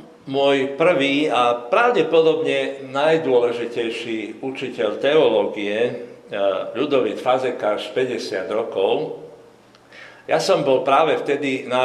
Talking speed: 85 wpm